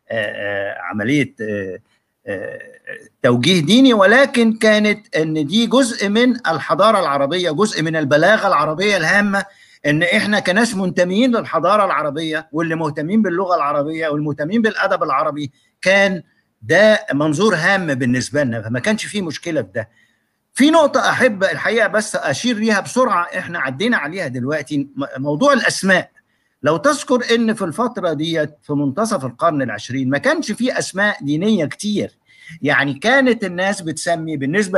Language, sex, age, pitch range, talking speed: Arabic, male, 50-69, 145-220 Hz, 130 wpm